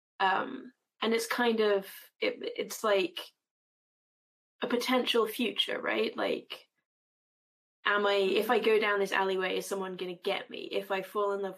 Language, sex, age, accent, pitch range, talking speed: English, female, 20-39, British, 190-230 Hz, 165 wpm